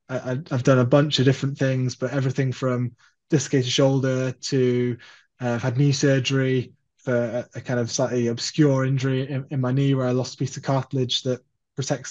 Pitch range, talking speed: 130-145 Hz, 200 wpm